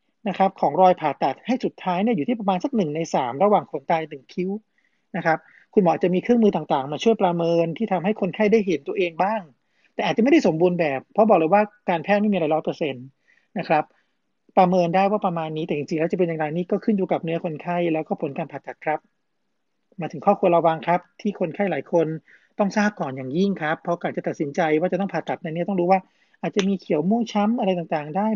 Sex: male